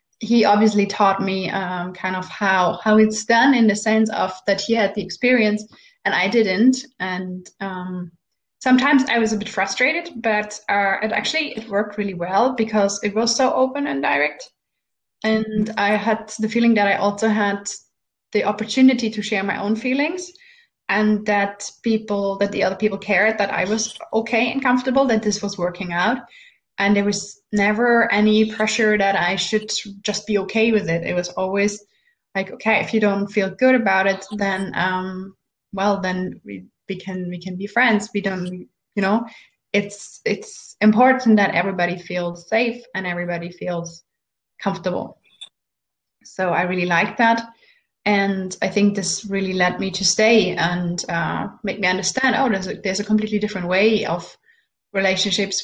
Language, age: English, 20-39